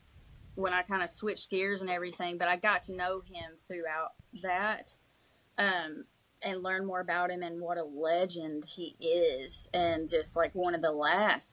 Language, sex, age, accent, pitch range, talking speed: English, female, 20-39, American, 170-220 Hz, 180 wpm